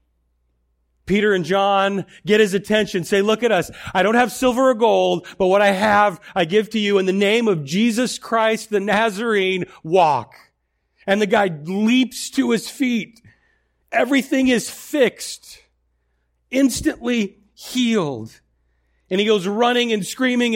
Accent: American